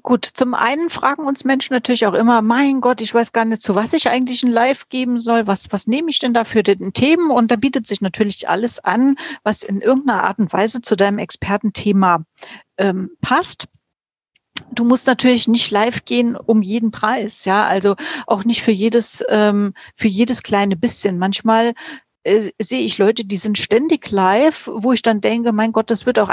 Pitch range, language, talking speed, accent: 205-250 Hz, German, 195 wpm, German